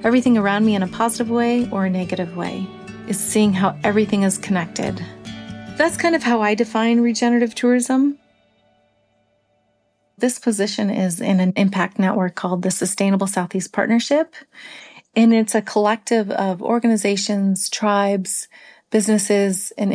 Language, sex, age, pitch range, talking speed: English, female, 30-49, 185-220 Hz, 140 wpm